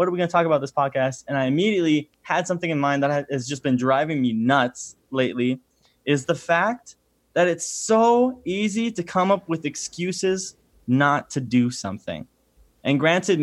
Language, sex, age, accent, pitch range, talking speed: English, male, 10-29, American, 130-170 Hz, 190 wpm